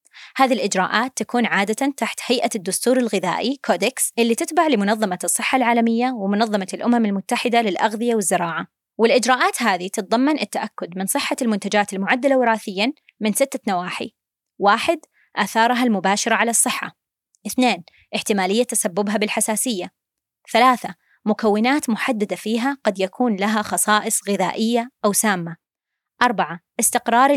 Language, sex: Arabic, female